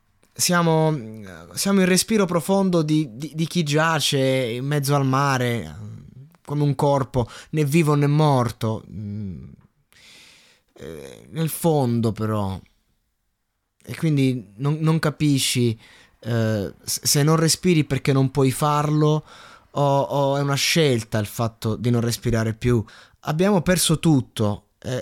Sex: male